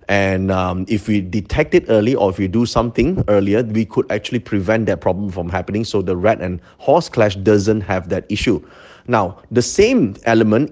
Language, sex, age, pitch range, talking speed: English, male, 30-49, 100-120 Hz, 195 wpm